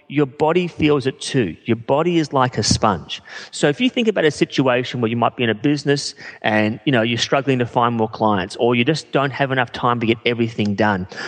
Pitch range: 120-155 Hz